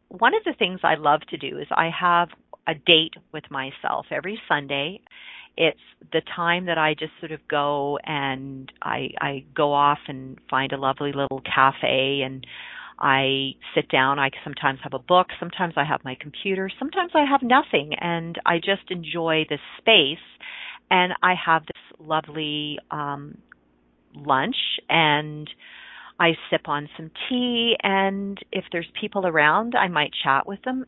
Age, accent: 40-59, American